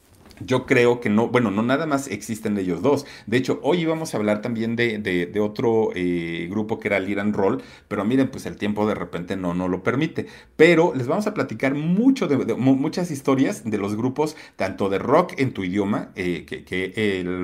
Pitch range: 105-145 Hz